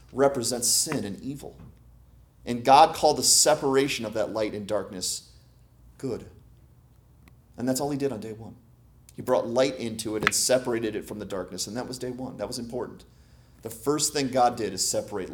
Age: 30-49